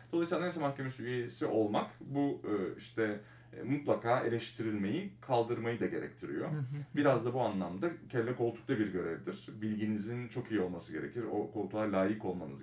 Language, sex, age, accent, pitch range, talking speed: Turkish, male, 30-49, native, 105-140 Hz, 140 wpm